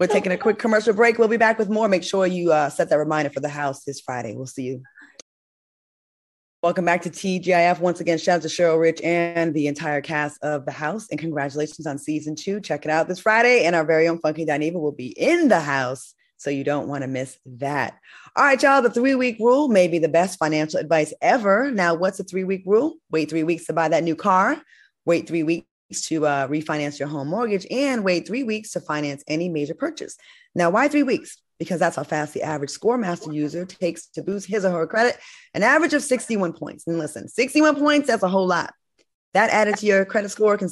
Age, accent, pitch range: 20-39, American, 155-215 Hz